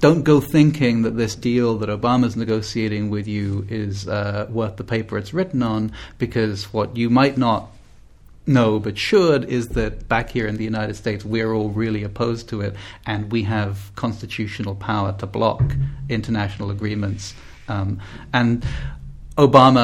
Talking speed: 160 wpm